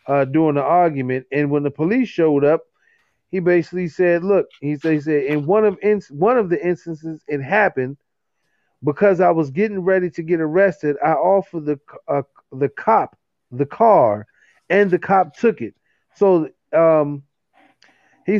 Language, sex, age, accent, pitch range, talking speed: English, male, 40-59, American, 150-195 Hz, 170 wpm